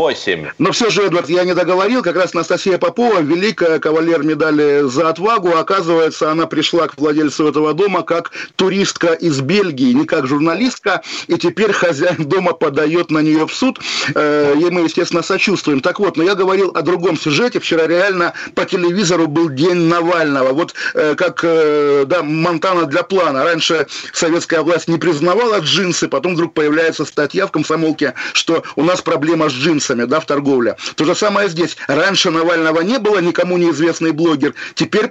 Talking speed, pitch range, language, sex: 165 wpm, 160-190 Hz, Russian, male